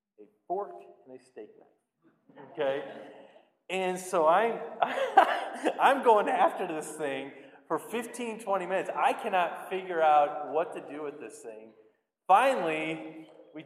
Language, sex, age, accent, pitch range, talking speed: English, male, 40-59, American, 135-190 Hz, 135 wpm